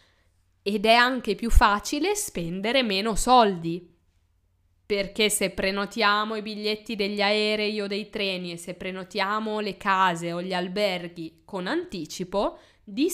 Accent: native